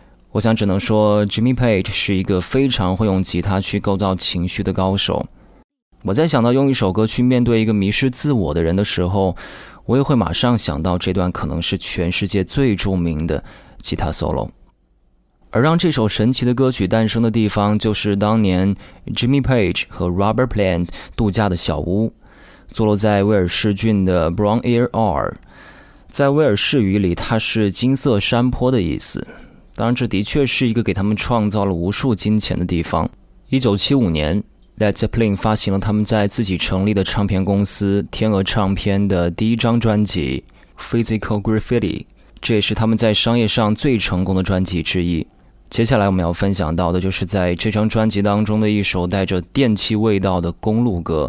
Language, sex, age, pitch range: Chinese, male, 20-39, 95-115 Hz